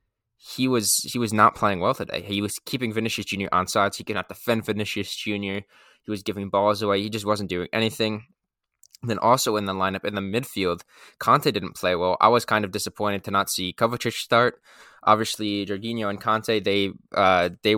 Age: 20-39